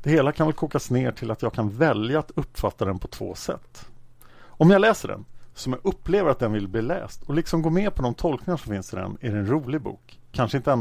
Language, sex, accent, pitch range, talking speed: Swedish, male, Norwegian, 110-155 Hz, 265 wpm